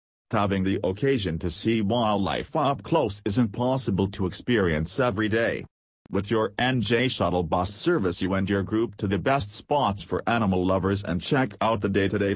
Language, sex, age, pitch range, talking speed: English, male, 40-59, 95-115 Hz, 175 wpm